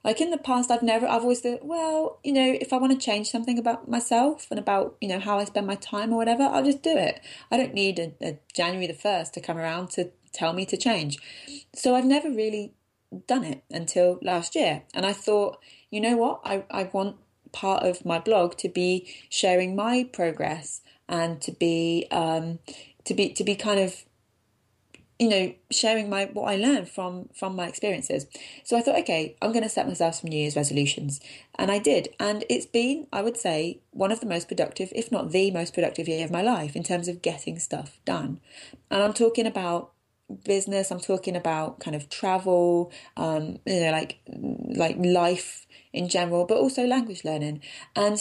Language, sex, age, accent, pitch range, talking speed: English, female, 20-39, British, 170-230 Hz, 205 wpm